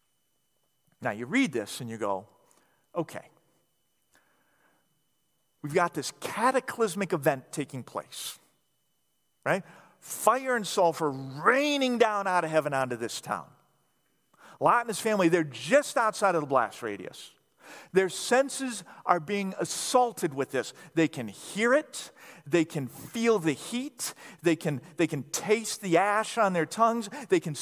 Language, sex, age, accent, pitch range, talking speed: English, male, 40-59, American, 160-255 Hz, 140 wpm